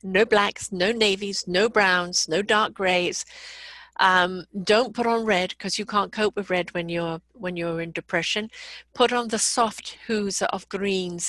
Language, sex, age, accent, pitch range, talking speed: English, female, 50-69, British, 180-220 Hz, 175 wpm